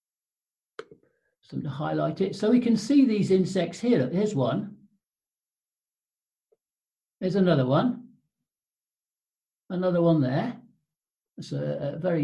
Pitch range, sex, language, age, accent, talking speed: 140-205 Hz, male, English, 60-79, British, 110 wpm